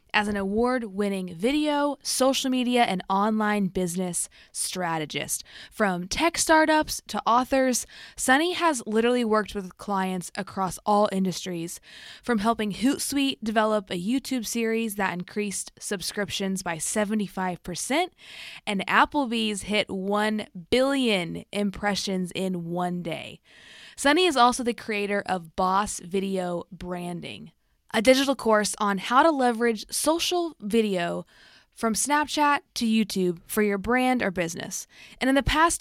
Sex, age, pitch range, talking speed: female, 20-39, 190-250 Hz, 125 wpm